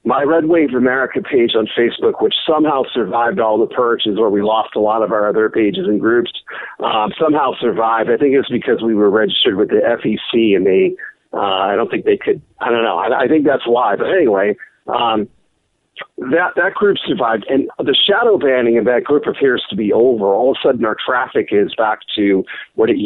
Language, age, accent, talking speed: English, 50-69, American, 215 wpm